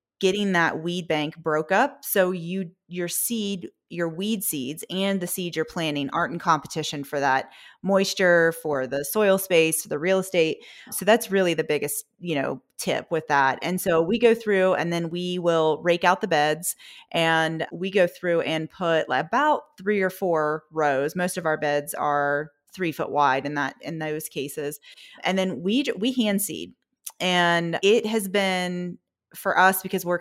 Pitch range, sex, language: 160-195 Hz, female, English